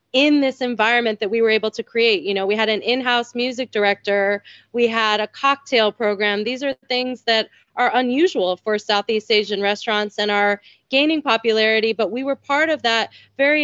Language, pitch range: English, 215-250 Hz